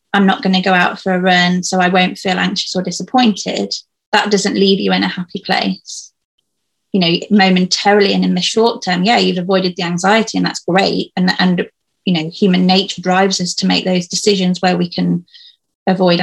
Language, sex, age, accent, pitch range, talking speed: English, female, 20-39, British, 180-205 Hz, 205 wpm